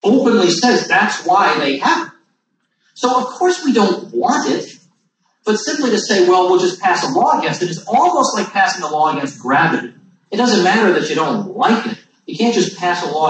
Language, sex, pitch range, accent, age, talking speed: English, male, 175-255 Hz, American, 40-59, 215 wpm